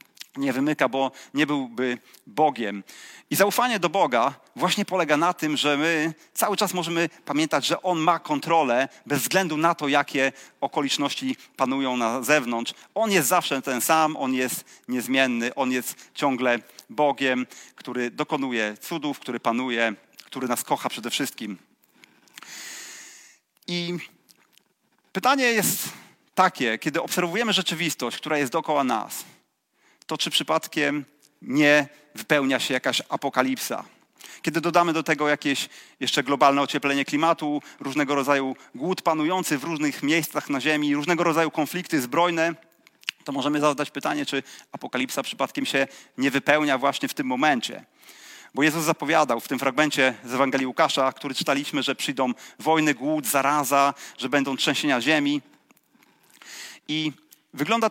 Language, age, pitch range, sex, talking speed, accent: Polish, 40-59, 135-165 Hz, male, 135 wpm, native